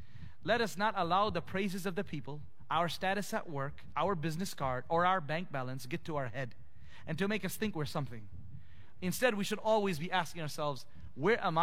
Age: 30-49